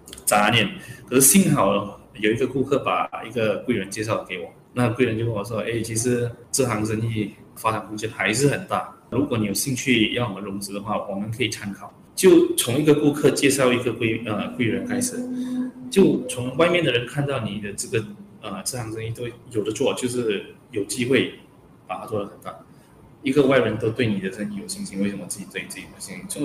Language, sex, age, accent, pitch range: Chinese, male, 20-39, native, 110-135 Hz